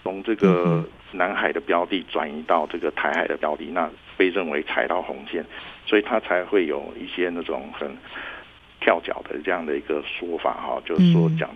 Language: Chinese